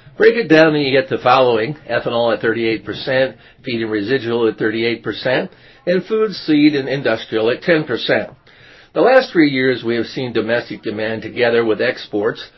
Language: English